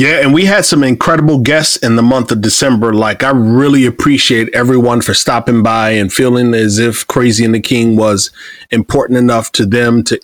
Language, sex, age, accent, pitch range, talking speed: English, male, 30-49, American, 115-130 Hz, 200 wpm